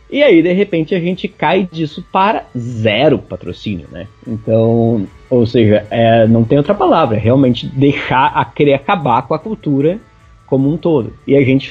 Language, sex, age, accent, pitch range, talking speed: Portuguese, male, 20-39, Brazilian, 120-155 Hz, 180 wpm